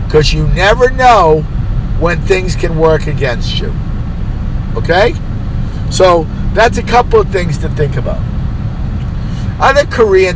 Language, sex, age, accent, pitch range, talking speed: English, male, 50-69, American, 120-185 Hz, 125 wpm